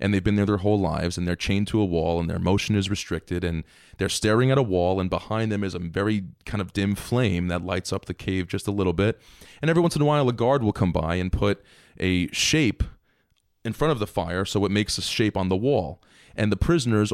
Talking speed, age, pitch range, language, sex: 260 wpm, 30-49, 90-115 Hz, English, male